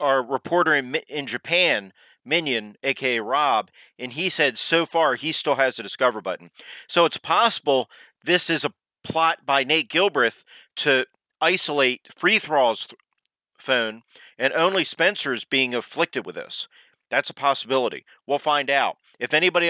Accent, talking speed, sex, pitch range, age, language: American, 150 wpm, male, 125-160 Hz, 40-59, English